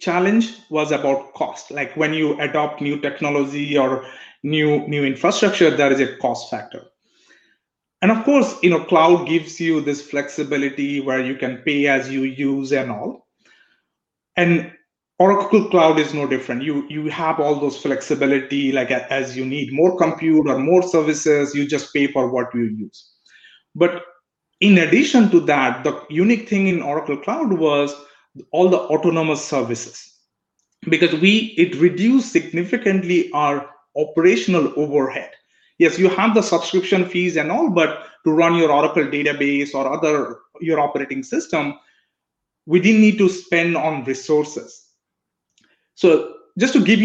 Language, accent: English, Indian